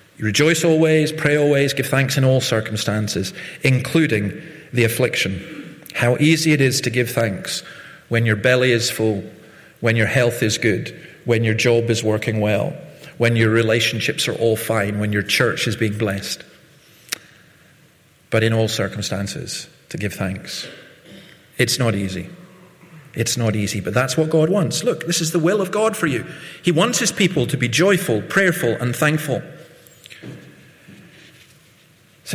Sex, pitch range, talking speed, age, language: male, 115-160 Hz, 160 wpm, 40-59, English